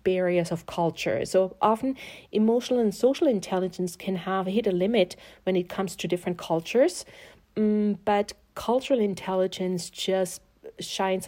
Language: English